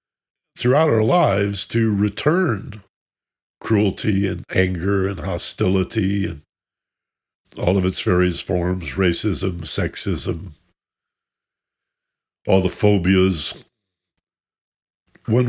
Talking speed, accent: 85 wpm, American